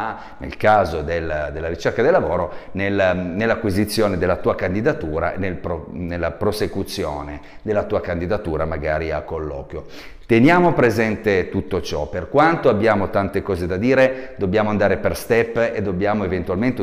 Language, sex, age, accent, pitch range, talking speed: Italian, male, 40-59, native, 85-115 Hz, 130 wpm